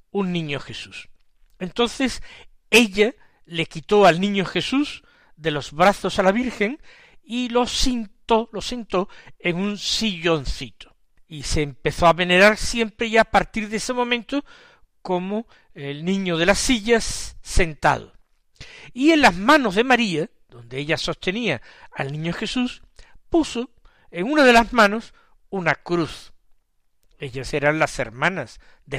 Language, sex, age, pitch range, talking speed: Spanish, male, 60-79, 165-240 Hz, 140 wpm